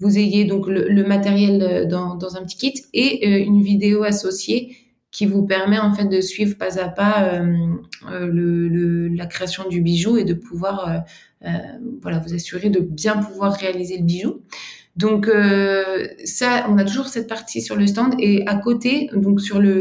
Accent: French